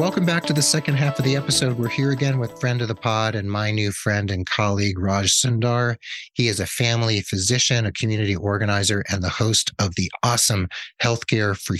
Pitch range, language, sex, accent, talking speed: 95-120 Hz, English, male, American, 210 wpm